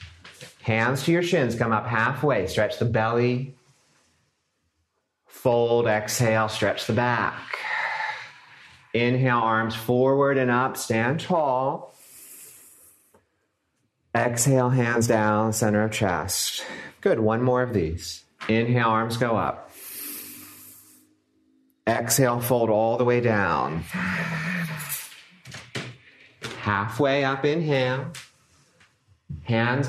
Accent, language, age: American, English, 40-59